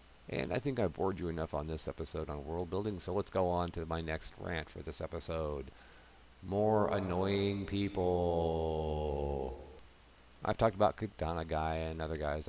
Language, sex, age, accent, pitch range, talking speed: English, male, 50-69, American, 80-115 Hz, 170 wpm